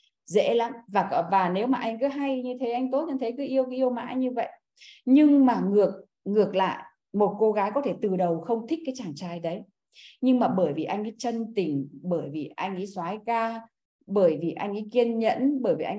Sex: female